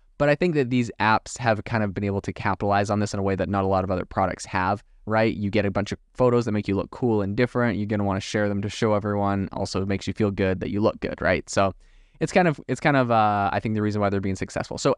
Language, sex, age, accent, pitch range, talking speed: English, male, 20-39, American, 100-115 Hz, 310 wpm